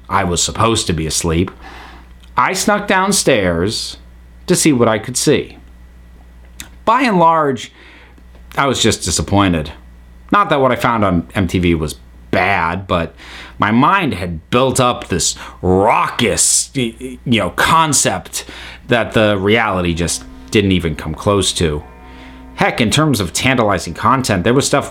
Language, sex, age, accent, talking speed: English, male, 30-49, American, 145 wpm